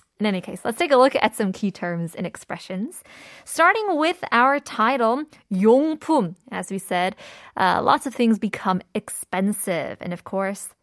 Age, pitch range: 20-39, 185-240 Hz